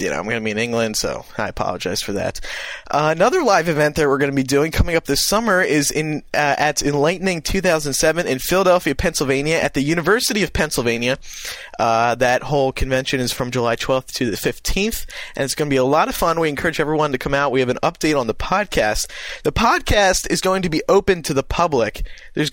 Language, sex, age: English, male, 20-39